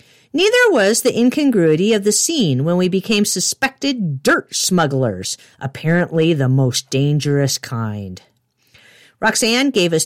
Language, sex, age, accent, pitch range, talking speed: English, female, 50-69, American, 140-200 Hz, 125 wpm